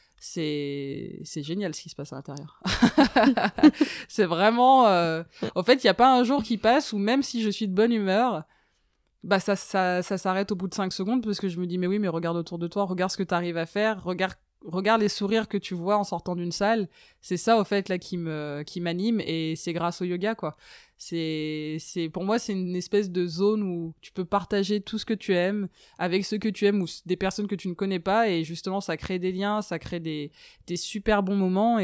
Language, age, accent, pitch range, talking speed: French, 20-39, French, 170-210 Hz, 245 wpm